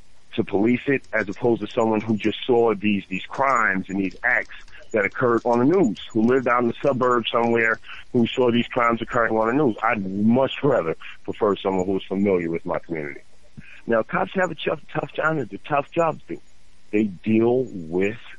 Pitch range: 90-115 Hz